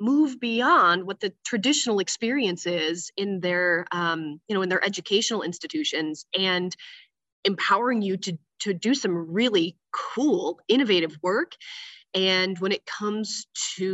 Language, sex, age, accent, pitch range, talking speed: English, female, 20-39, American, 175-225 Hz, 140 wpm